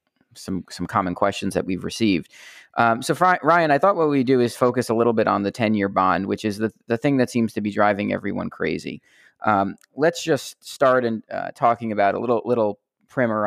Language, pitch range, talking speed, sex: English, 105-125 Hz, 215 wpm, male